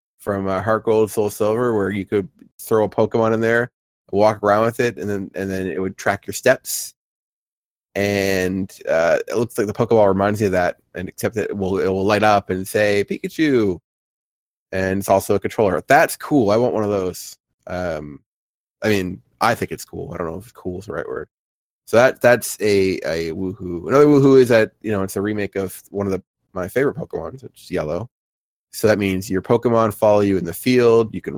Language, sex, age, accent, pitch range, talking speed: English, male, 20-39, American, 95-120 Hz, 220 wpm